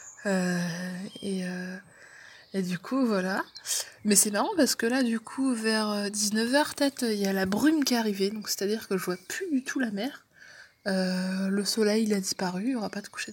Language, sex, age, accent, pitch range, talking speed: French, female, 20-39, French, 190-225 Hz, 225 wpm